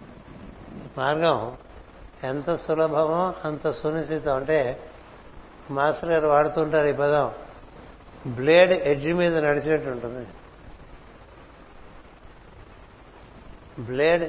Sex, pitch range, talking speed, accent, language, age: male, 135-160 Hz, 70 wpm, native, Telugu, 60-79